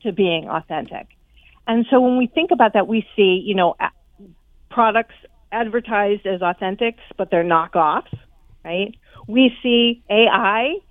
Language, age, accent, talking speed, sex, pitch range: English, 50-69, American, 140 wpm, female, 200-270 Hz